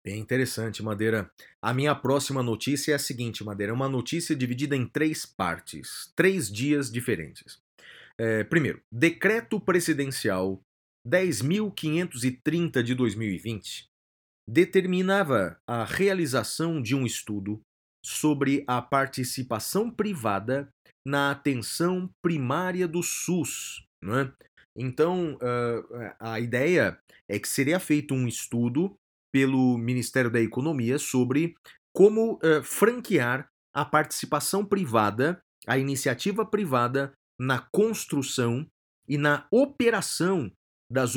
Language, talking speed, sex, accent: Portuguese, 110 wpm, male, Brazilian